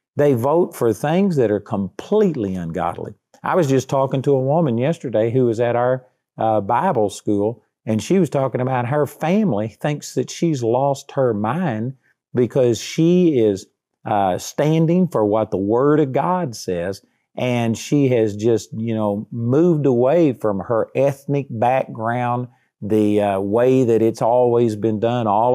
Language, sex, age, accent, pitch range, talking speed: English, male, 50-69, American, 115-155 Hz, 160 wpm